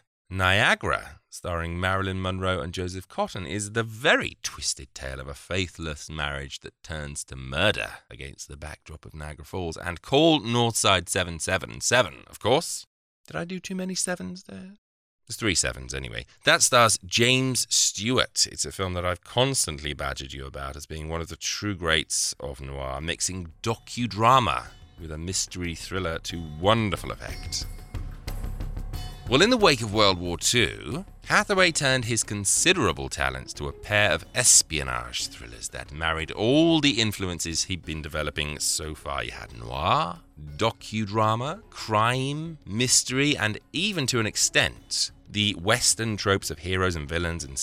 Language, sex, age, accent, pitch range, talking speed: English, male, 30-49, British, 75-110 Hz, 155 wpm